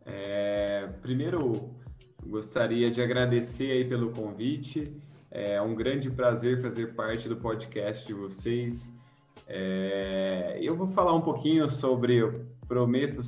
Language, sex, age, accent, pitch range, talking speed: Portuguese, male, 20-39, Brazilian, 120-155 Hz, 120 wpm